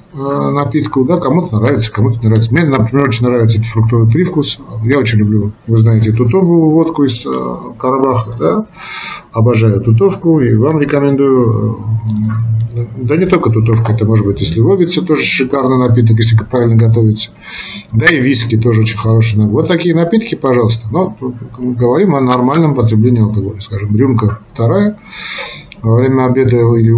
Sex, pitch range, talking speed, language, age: male, 110-130 Hz, 145 wpm, Russian, 50-69